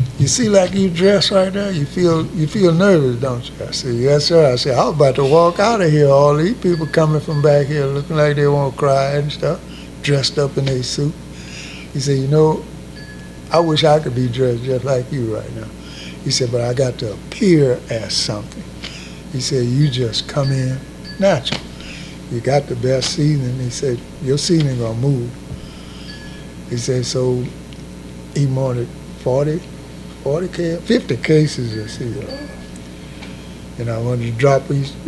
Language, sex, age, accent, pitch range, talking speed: English, male, 60-79, American, 120-150 Hz, 185 wpm